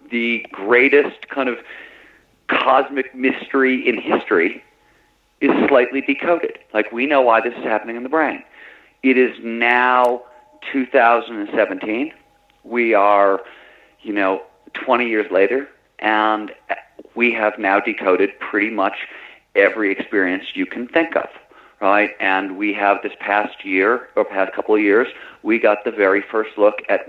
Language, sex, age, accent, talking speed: English, male, 50-69, American, 140 wpm